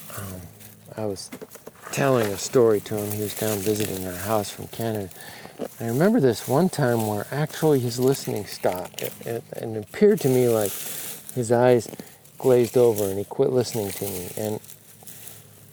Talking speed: 170 wpm